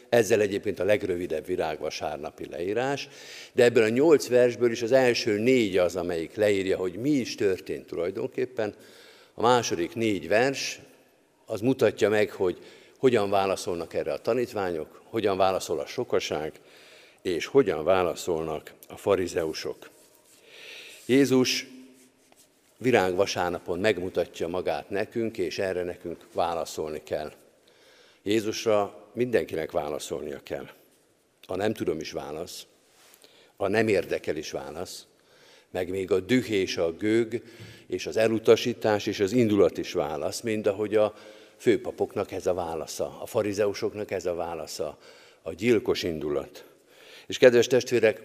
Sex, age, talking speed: male, 50-69, 125 wpm